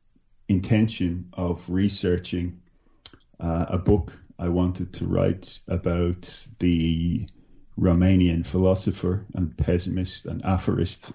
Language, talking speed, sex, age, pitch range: English, 95 wpm, male, 40-59, 85-95 Hz